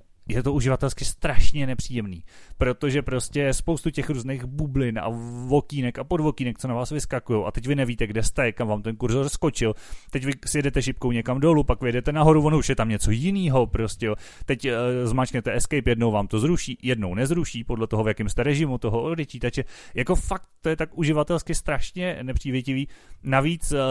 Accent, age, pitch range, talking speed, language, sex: native, 30-49, 115-145 Hz, 190 wpm, Czech, male